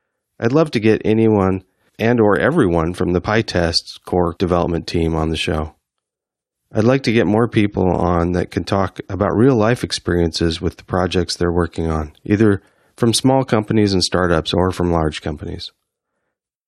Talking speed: 165 wpm